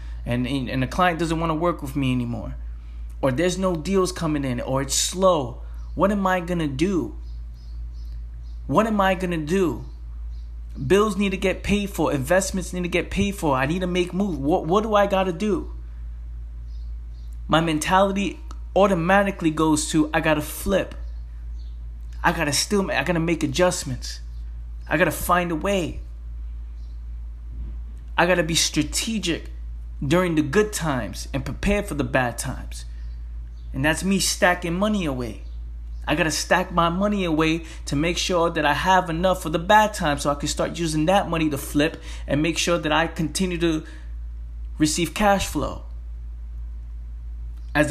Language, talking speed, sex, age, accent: English, 165 wpm, male, 20-39, American